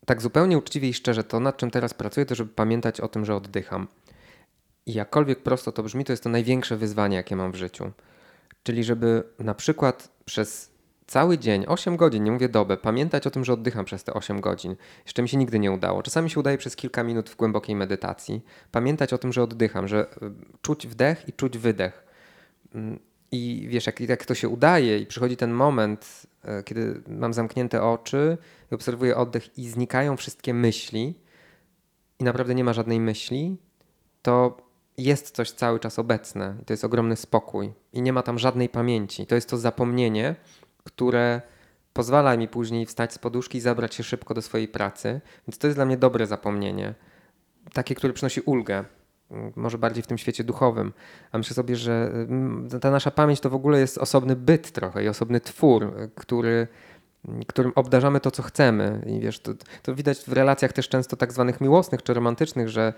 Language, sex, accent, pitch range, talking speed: Polish, male, native, 110-130 Hz, 185 wpm